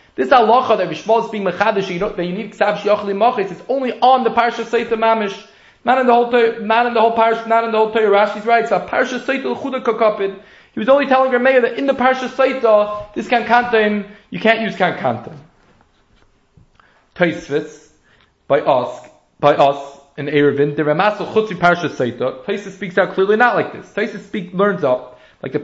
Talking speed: 190 wpm